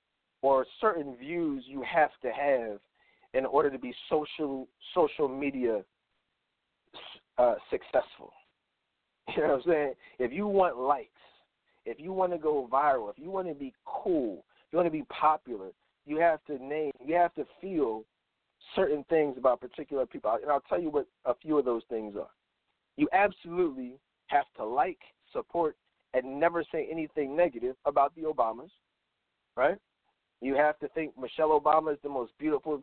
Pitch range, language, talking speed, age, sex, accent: 140-170 Hz, English, 170 wpm, 40-59, male, American